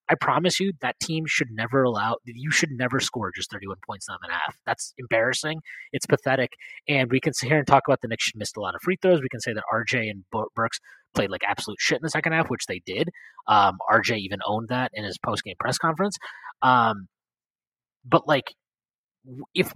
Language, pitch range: English, 120-160 Hz